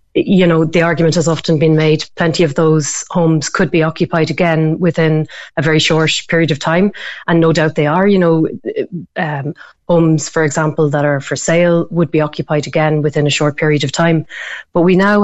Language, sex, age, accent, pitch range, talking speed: English, female, 30-49, Irish, 150-175 Hz, 200 wpm